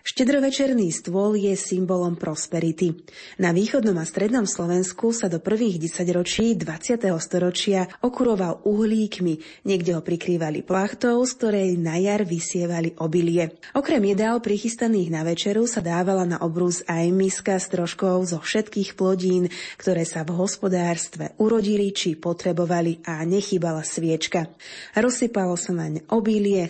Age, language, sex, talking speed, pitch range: 20-39, Slovak, female, 130 wpm, 175-215 Hz